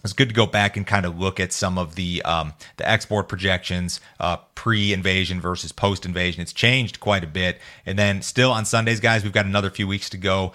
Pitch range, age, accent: 90-105 Hz, 30-49, American